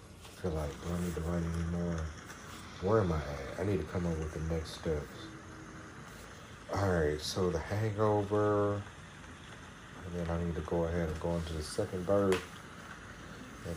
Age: 40-59